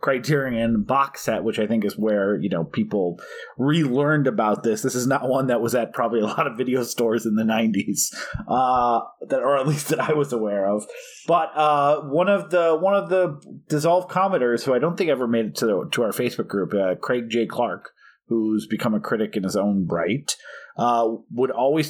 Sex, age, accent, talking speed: male, 30-49, American, 210 wpm